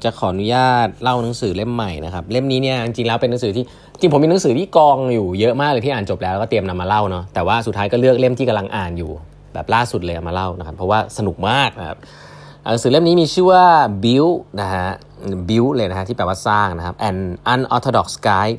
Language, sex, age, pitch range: Thai, male, 20-39, 90-120 Hz